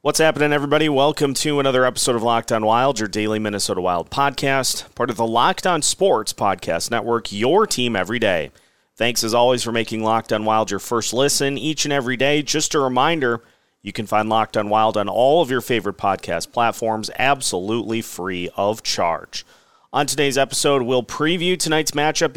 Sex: male